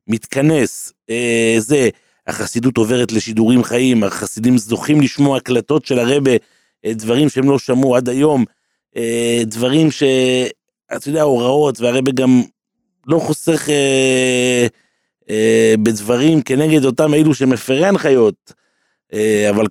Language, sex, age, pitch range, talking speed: Hebrew, male, 30-49, 110-130 Hz, 100 wpm